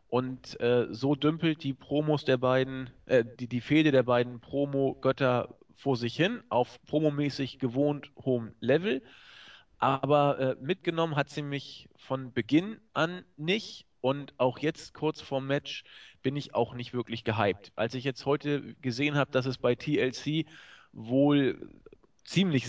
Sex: male